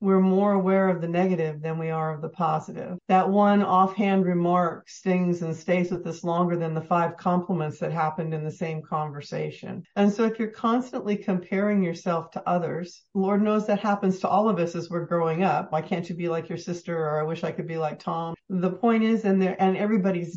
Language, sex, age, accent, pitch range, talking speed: English, female, 50-69, American, 170-205 Hz, 220 wpm